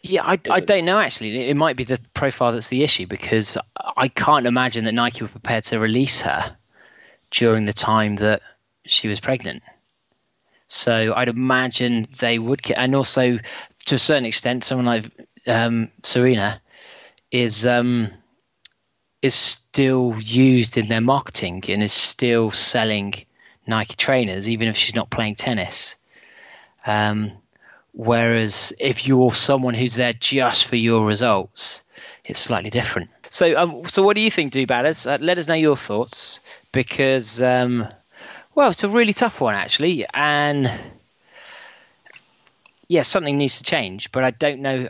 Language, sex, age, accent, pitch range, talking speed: English, male, 20-39, British, 115-135 Hz, 150 wpm